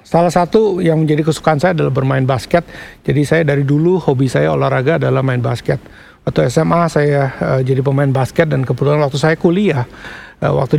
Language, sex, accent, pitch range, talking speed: English, male, Indonesian, 140-180 Hz, 185 wpm